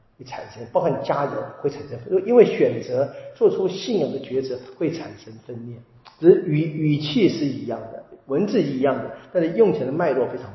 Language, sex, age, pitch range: Chinese, male, 50-69, 125-155 Hz